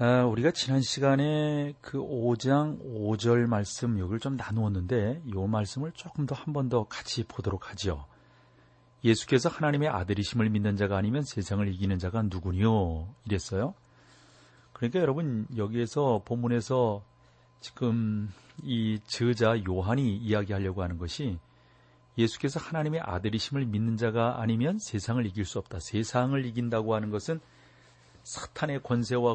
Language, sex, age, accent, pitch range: Korean, male, 40-59, native, 100-125 Hz